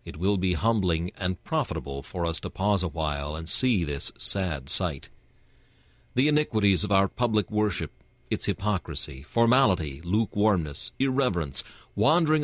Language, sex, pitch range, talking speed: English, male, 85-120 Hz, 140 wpm